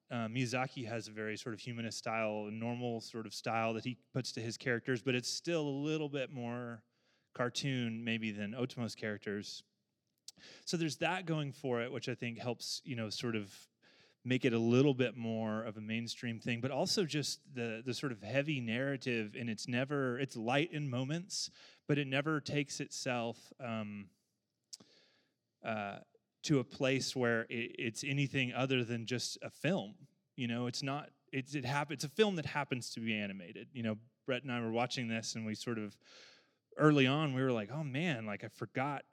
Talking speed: 195 wpm